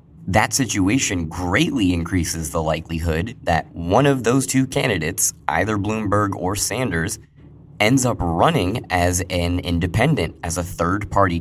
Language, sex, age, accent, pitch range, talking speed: English, male, 20-39, American, 85-110 Hz, 130 wpm